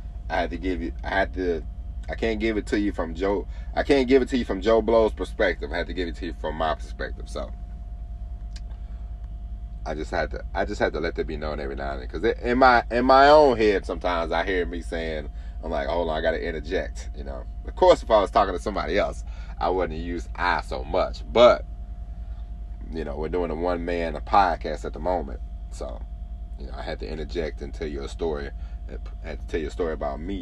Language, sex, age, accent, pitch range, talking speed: English, male, 30-49, American, 65-90 Hz, 240 wpm